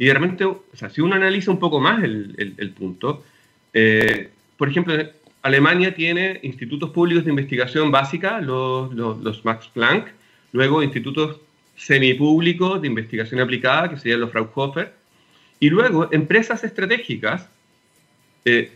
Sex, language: male, Spanish